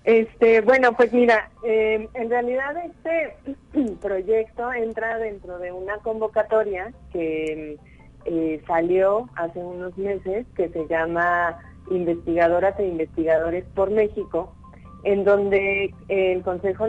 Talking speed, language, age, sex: 115 wpm, Spanish, 30-49, female